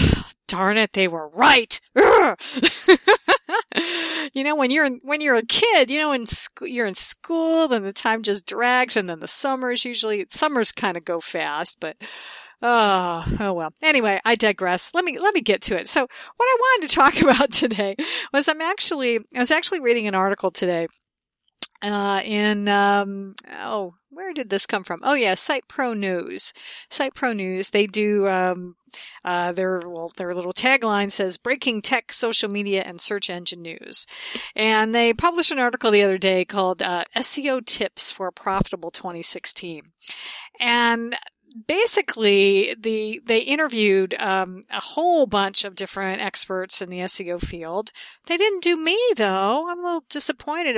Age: 50-69